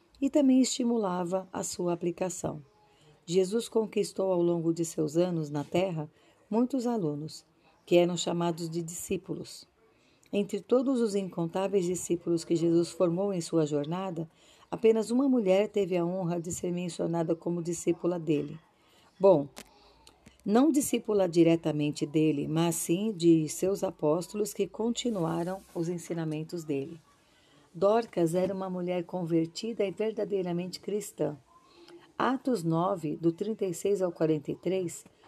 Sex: female